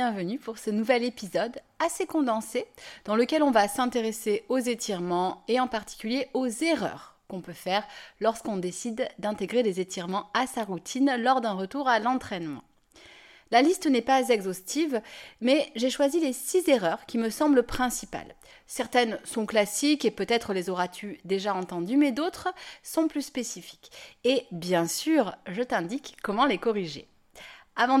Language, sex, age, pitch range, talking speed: French, female, 30-49, 205-265 Hz, 155 wpm